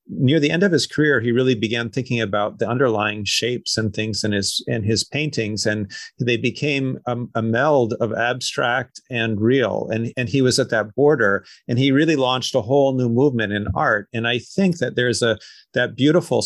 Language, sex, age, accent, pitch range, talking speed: English, male, 40-59, American, 110-135 Hz, 205 wpm